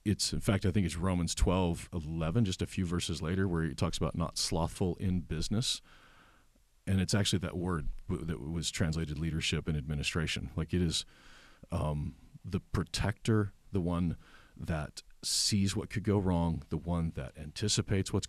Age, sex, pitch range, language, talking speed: 40-59, male, 85-105 Hz, English, 170 wpm